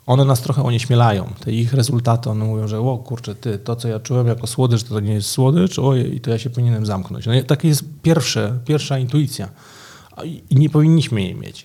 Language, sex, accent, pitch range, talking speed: Polish, male, native, 115-150 Hz, 215 wpm